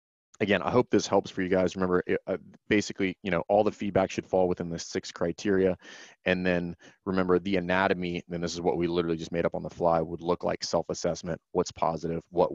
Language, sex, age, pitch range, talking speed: English, male, 30-49, 80-95 Hz, 215 wpm